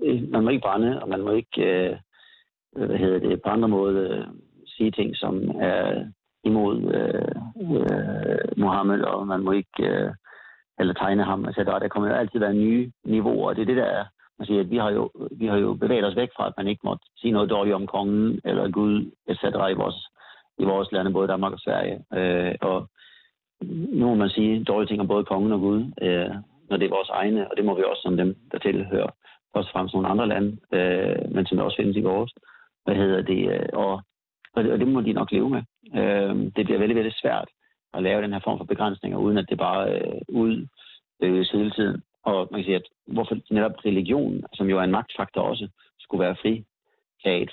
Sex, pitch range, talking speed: male, 95-105 Hz, 210 wpm